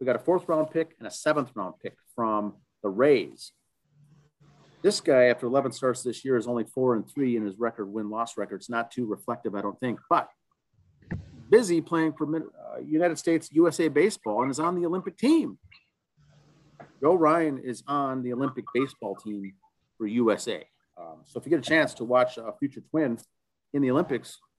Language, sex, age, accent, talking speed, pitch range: English, male, 40-59, American, 190 wpm, 115-145 Hz